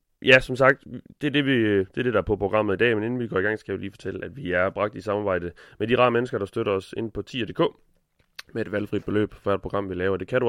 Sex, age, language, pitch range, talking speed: male, 30-49, Danish, 95-115 Hz, 310 wpm